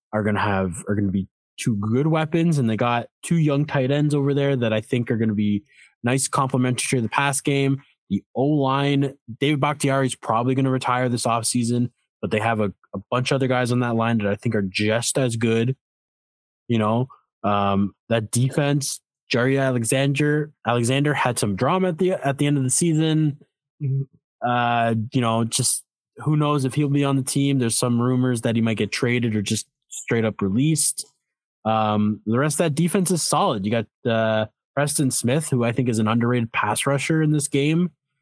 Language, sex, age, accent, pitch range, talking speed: English, male, 20-39, American, 115-140 Hz, 205 wpm